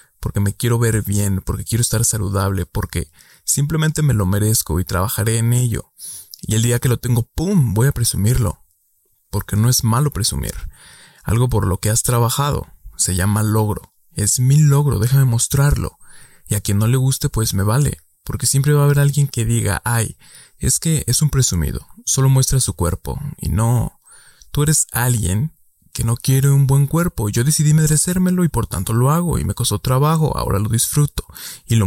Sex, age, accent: male, 20-39, Mexican